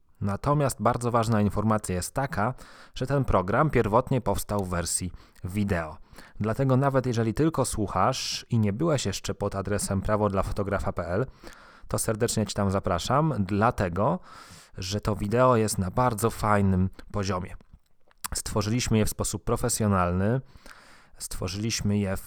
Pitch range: 95-120 Hz